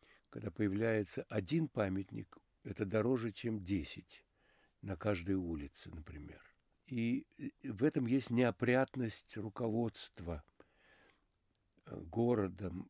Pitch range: 100-125 Hz